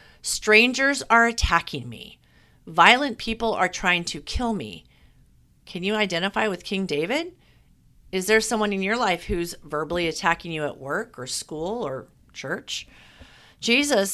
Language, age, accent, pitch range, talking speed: English, 40-59, American, 165-220 Hz, 145 wpm